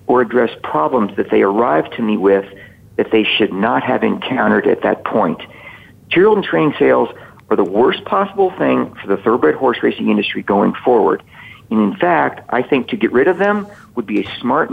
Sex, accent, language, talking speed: male, American, English, 200 wpm